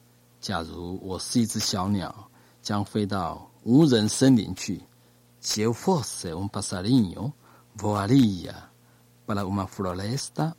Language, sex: Chinese, male